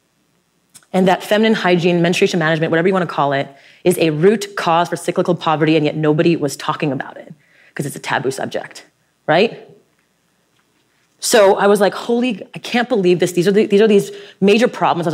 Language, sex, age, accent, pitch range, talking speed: English, female, 30-49, American, 155-195 Hz, 195 wpm